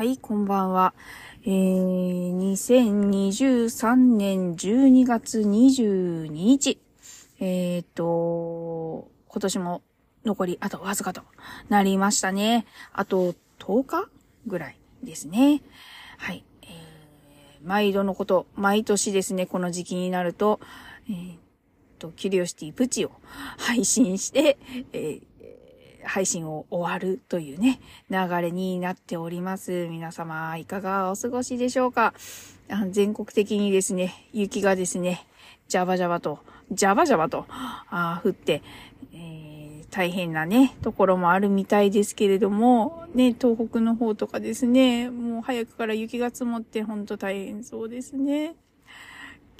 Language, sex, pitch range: Japanese, female, 180-235 Hz